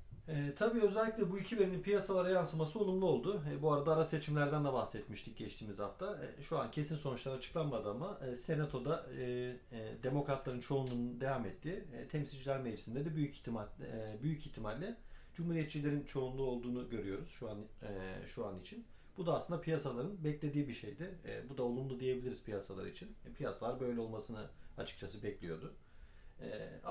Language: Turkish